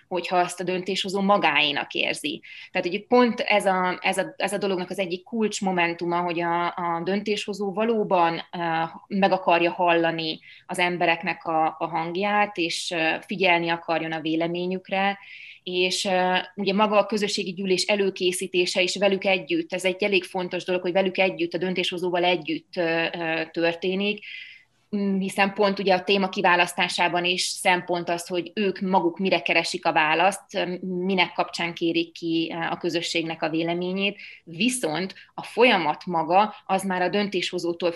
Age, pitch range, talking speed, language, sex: 20-39, 170-195 Hz, 145 wpm, Hungarian, female